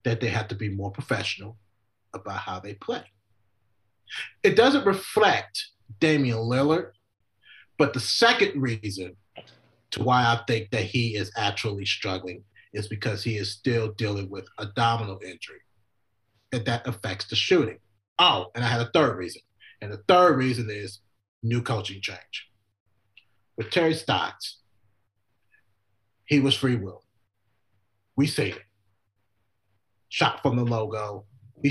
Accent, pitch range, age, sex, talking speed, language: American, 100-120 Hz, 30-49, male, 140 wpm, English